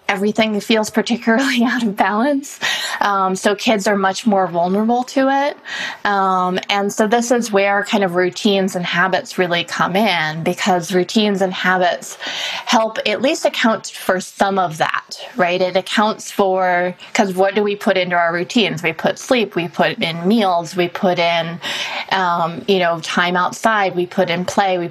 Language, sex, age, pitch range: English, female, 20-39, 180-220 Hz